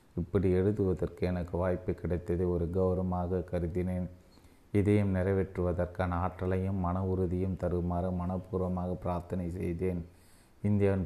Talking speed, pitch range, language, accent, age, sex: 100 wpm, 90-95 Hz, Tamil, native, 30-49, male